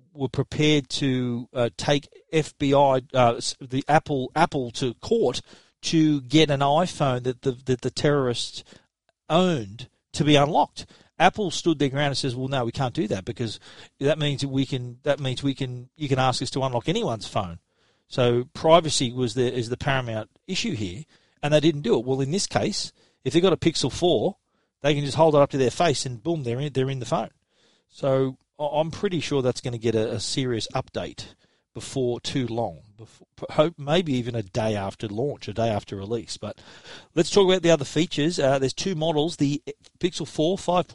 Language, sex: English, male